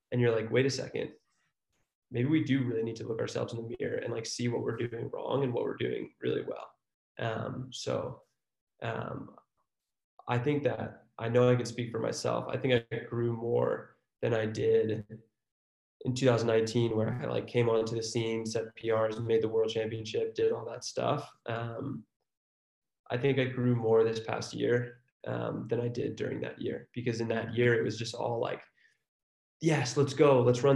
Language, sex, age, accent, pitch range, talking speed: English, male, 20-39, American, 115-130 Hz, 195 wpm